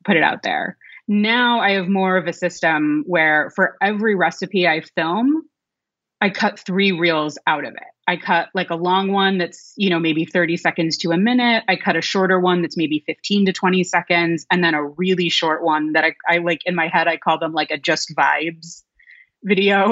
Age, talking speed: 30-49, 215 wpm